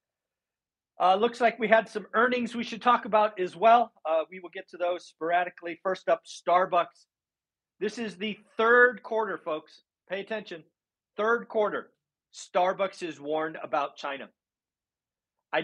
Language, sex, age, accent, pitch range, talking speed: English, male, 40-59, American, 150-215 Hz, 150 wpm